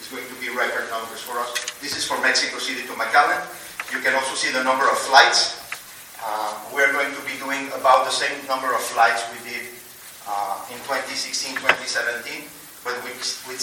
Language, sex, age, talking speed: English, male, 40-59, 185 wpm